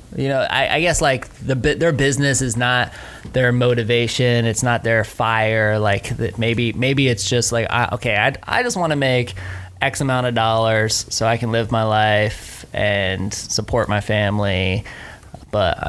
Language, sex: English, male